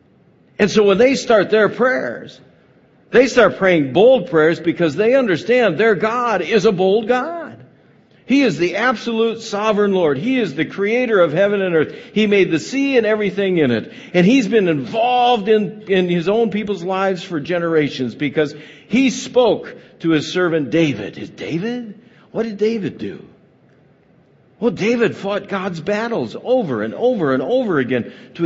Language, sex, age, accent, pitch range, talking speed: English, male, 60-79, American, 155-225 Hz, 170 wpm